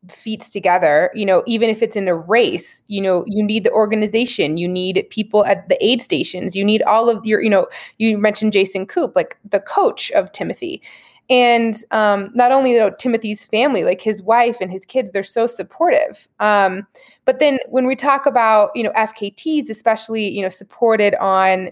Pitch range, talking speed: 190-235 Hz, 195 wpm